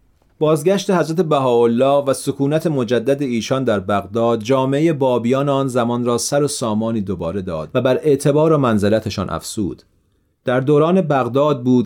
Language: Persian